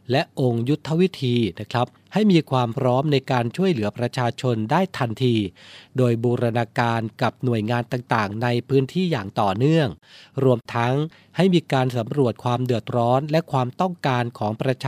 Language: Thai